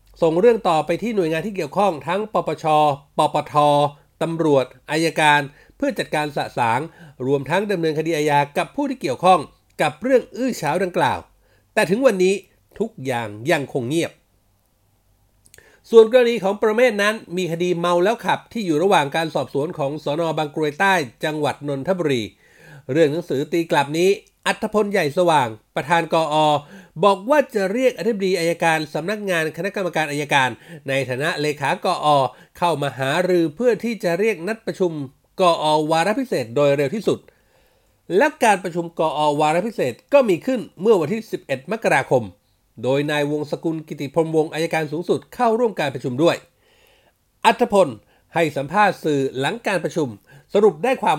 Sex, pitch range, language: male, 145-195 Hz, Thai